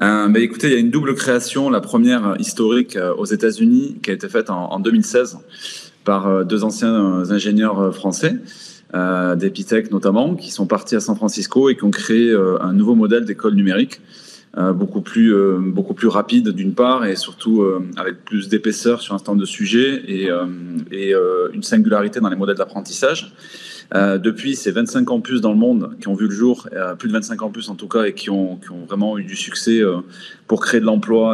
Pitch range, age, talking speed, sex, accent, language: 100-135 Hz, 20-39, 190 wpm, male, French, French